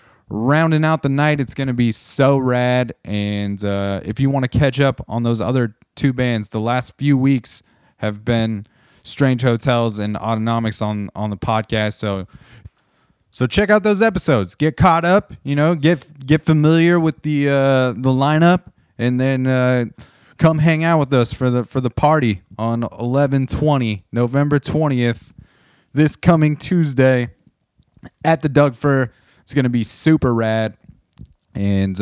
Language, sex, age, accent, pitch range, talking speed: English, male, 20-39, American, 110-140 Hz, 165 wpm